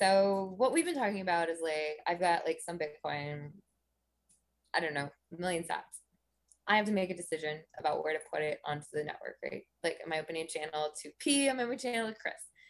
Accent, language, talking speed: American, English, 225 wpm